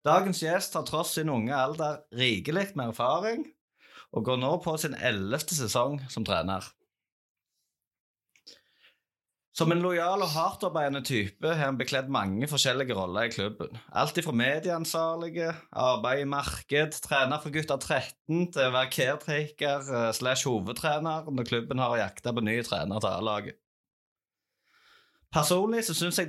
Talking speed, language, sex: 135 wpm, English, male